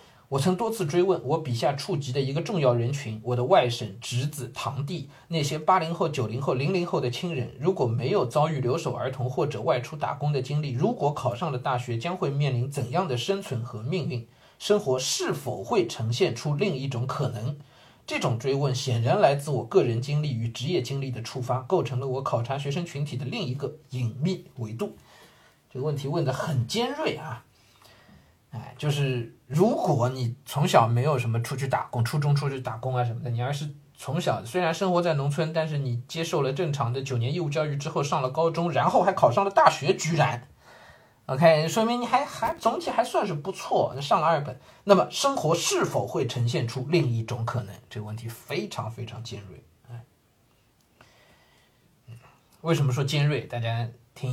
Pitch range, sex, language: 120-160 Hz, male, Chinese